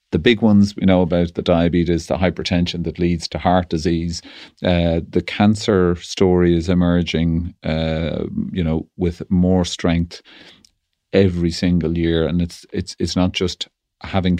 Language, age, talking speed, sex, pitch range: English, 40-59, 155 wpm, male, 85-100 Hz